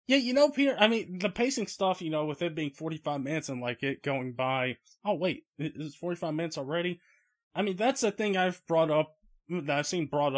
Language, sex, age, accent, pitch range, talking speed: English, male, 20-39, American, 130-175 Hz, 230 wpm